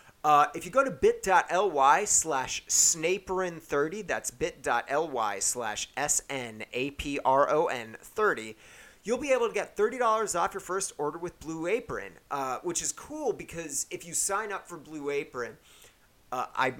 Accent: American